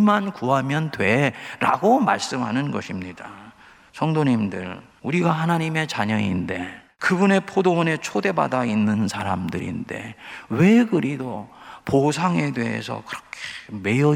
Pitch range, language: 115-180 Hz, Korean